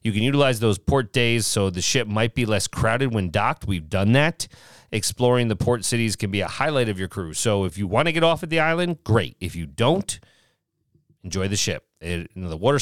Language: English